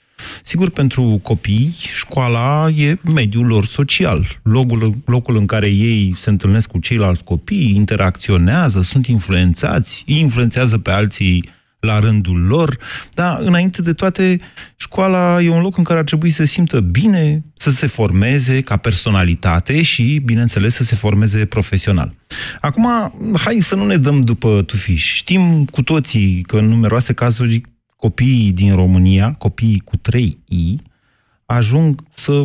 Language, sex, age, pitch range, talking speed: Romanian, male, 30-49, 100-130 Hz, 140 wpm